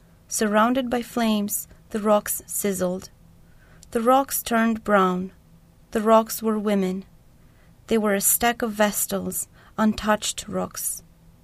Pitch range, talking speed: 195-225 Hz, 115 wpm